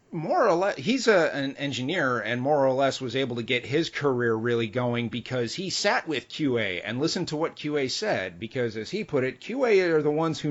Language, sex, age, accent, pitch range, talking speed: English, male, 30-49, American, 115-150 Hz, 230 wpm